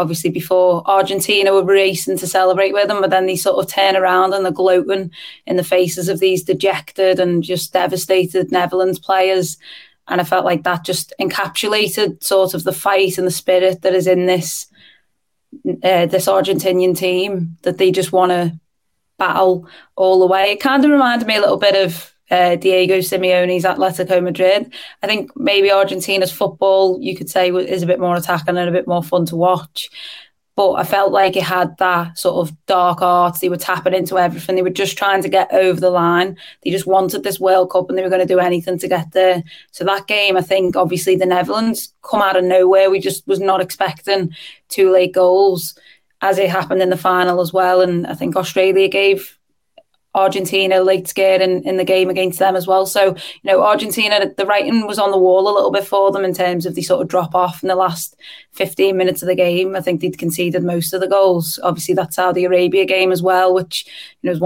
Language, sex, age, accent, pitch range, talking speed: English, female, 20-39, British, 180-190 Hz, 210 wpm